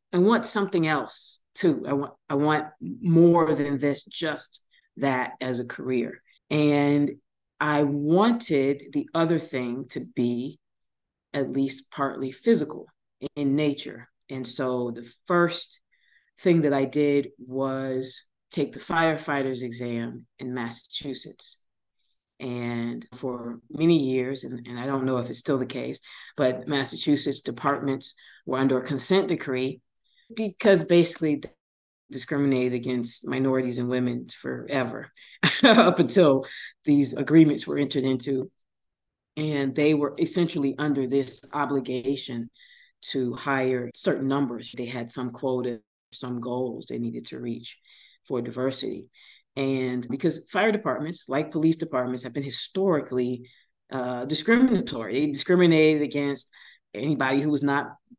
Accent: American